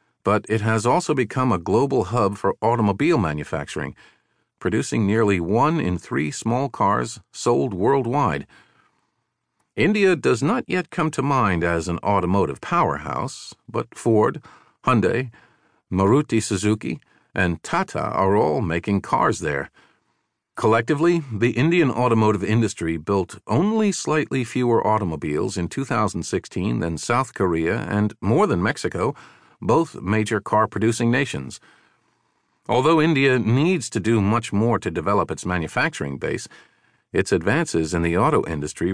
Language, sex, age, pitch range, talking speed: English, male, 50-69, 95-125 Hz, 130 wpm